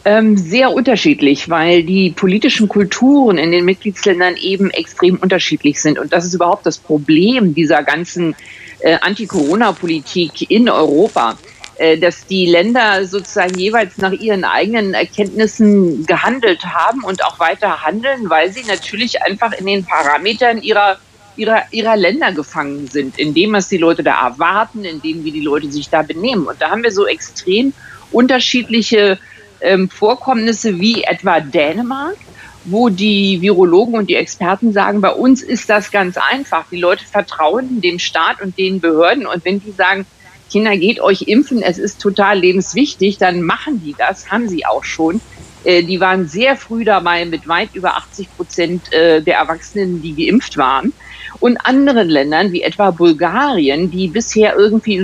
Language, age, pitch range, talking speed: German, 50-69, 175-225 Hz, 160 wpm